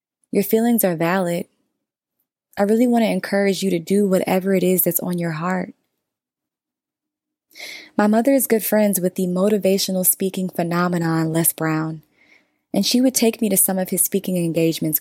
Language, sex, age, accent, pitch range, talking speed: English, female, 20-39, American, 175-215 Hz, 170 wpm